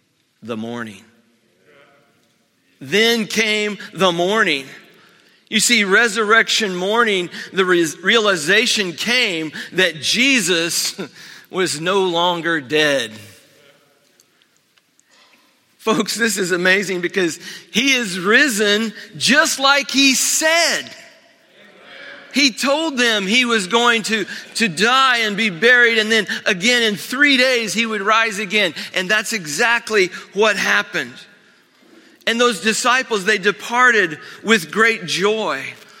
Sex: male